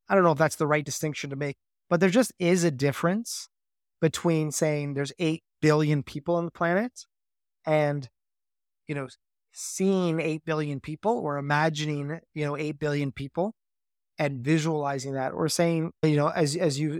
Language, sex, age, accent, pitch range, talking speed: English, male, 20-39, American, 145-160 Hz, 175 wpm